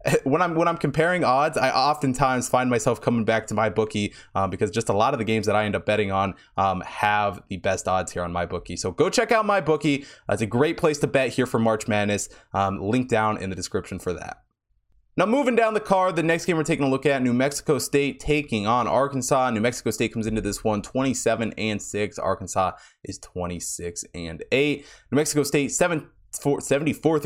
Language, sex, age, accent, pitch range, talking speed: English, male, 20-39, American, 100-140 Hz, 225 wpm